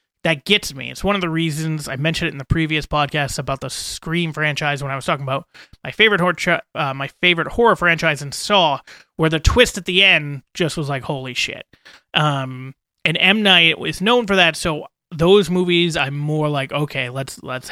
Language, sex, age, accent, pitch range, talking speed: English, male, 30-49, American, 140-175 Hz, 210 wpm